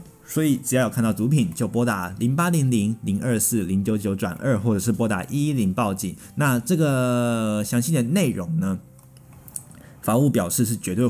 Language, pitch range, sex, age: Chinese, 110-135 Hz, male, 20-39